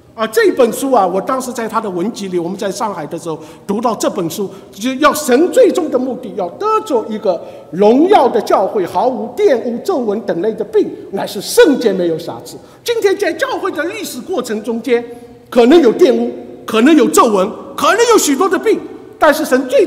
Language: Chinese